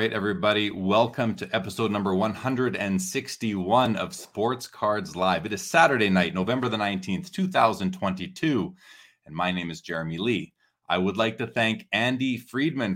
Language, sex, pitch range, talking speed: English, male, 95-125 Hz, 150 wpm